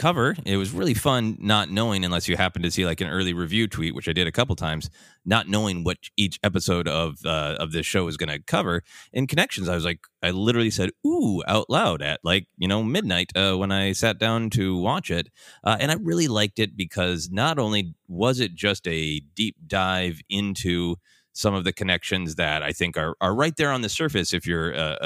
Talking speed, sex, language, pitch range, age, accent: 225 wpm, male, English, 85-110 Hz, 30-49, American